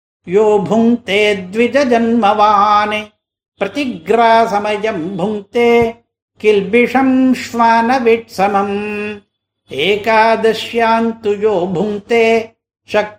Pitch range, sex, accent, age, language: 205-240 Hz, male, native, 60-79, Tamil